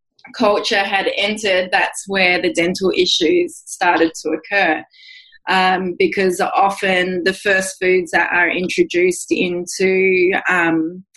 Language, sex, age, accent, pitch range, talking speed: English, female, 20-39, Australian, 175-200 Hz, 120 wpm